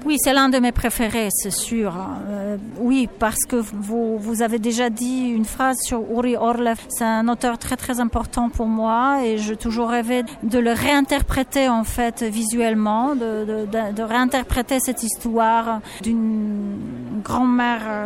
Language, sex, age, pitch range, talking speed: French, female, 40-59, 220-250 Hz, 160 wpm